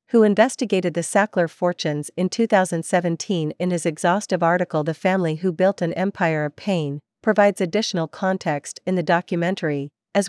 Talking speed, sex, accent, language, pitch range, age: 150 wpm, female, American, English, 165-195 Hz, 40-59